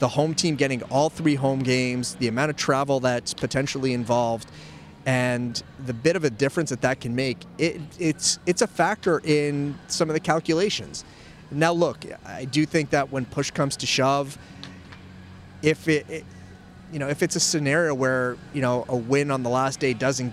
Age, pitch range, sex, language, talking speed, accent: 30-49, 125-155 Hz, male, English, 180 wpm, American